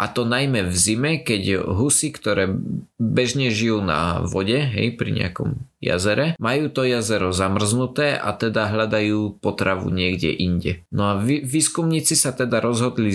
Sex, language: male, Slovak